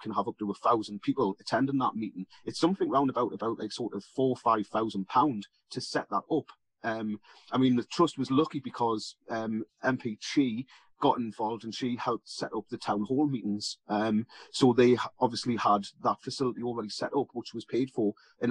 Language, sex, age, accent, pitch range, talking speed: English, male, 30-49, British, 110-130 Hz, 200 wpm